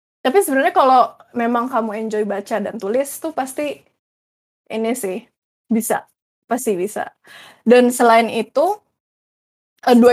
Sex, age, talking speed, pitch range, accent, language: female, 10-29, 120 wpm, 220-255 Hz, native, Indonesian